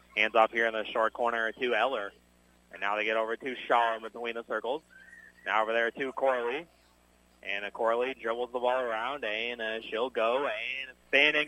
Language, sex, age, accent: English, male, 30-49, American